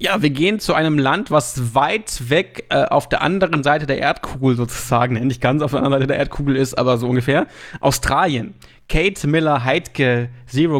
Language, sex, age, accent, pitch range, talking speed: German, male, 30-49, German, 130-165 Hz, 185 wpm